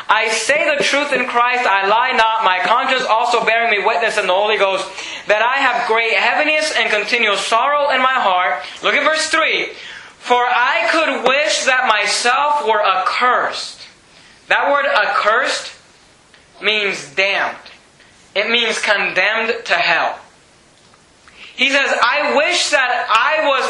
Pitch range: 205-265 Hz